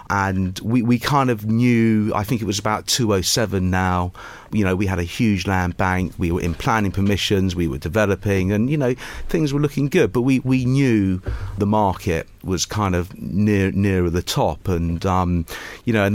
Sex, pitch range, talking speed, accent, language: male, 85-105 Hz, 195 wpm, British, English